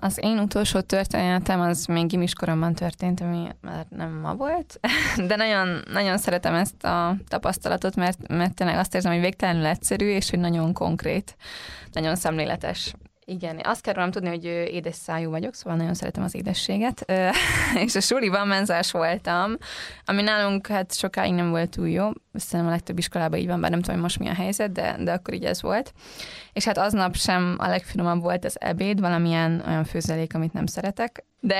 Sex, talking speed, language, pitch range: female, 180 wpm, Hungarian, 170-200 Hz